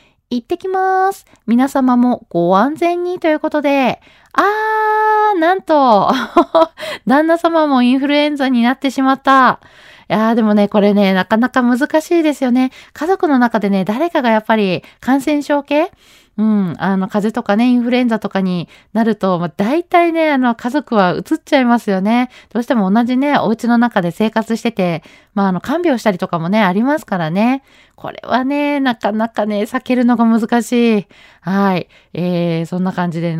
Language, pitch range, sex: Japanese, 195-275 Hz, female